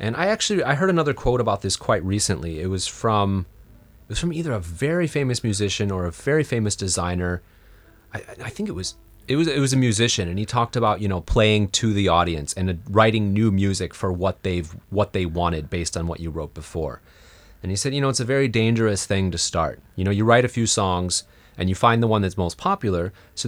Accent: American